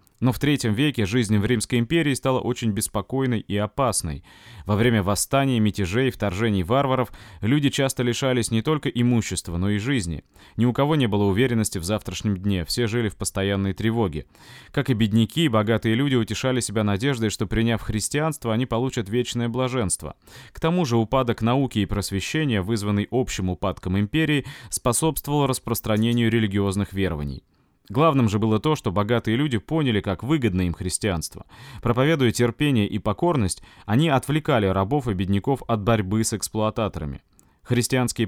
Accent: native